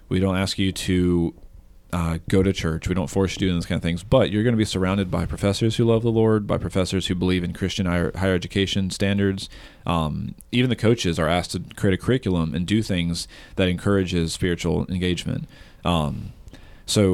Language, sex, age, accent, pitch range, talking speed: English, male, 40-59, American, 85-100 Hz, 210 wpm